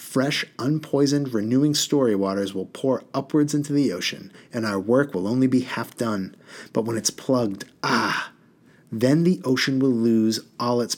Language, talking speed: English, 170 wpm